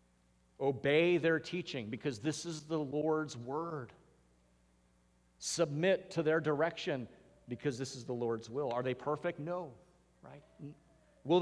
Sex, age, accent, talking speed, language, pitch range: male, 40-59, American, 130 wpm, English, 110-155 Hz